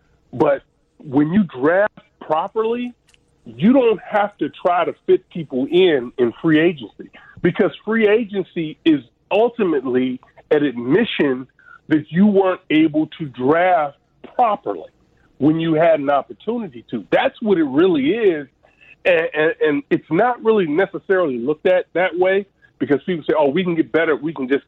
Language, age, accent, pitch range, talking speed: English, 40-59, American, 140-205 Hz, 155 wpm